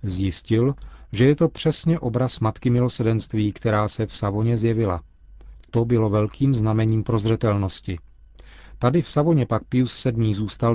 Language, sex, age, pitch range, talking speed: Czech, male, 40-59, 105-130 Hz, 140 wpm